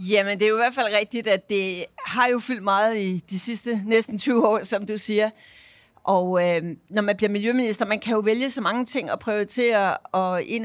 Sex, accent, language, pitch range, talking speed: female, native, Danish, 210-245 Hz, 225 wpm